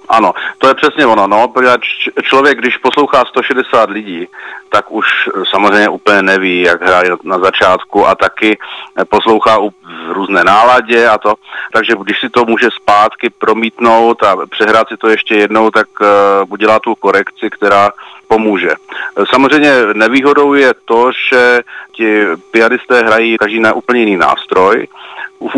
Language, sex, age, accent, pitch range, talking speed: Czech, male, 40-59, native, 105-140 Hz, 145 wpm